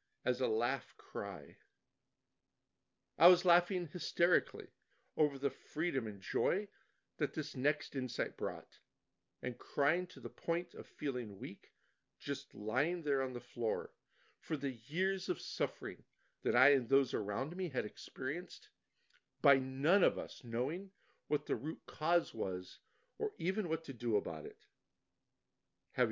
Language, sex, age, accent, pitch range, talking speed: English, male, 50-69, American, 140-195 Hz, 145 wpm